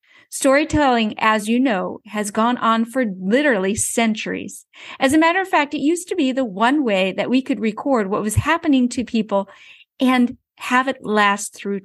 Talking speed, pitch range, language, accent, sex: 180 wpm, 215-280 Hz, English, American, female